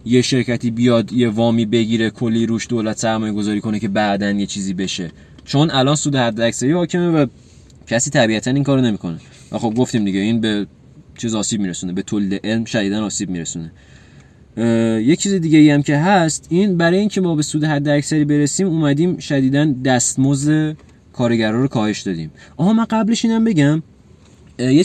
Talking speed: 170 wpm